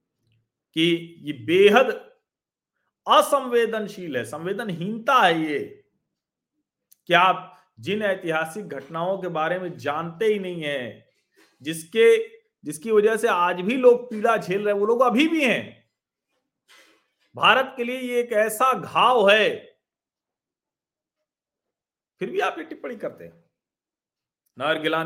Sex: male